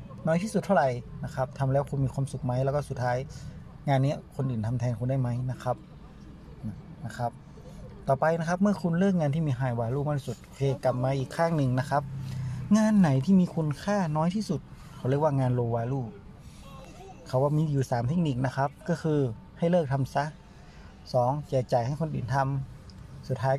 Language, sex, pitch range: Thai, male, 125-155 Hz